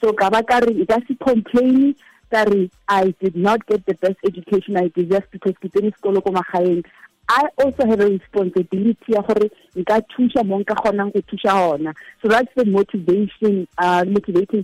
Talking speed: 120 wpm